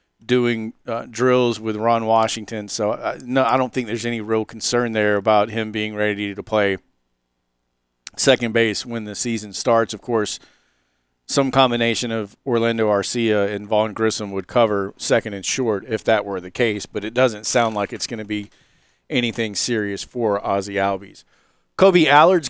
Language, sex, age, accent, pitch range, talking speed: English, male, 40-59, American, 105-130 Hz, 175 wpm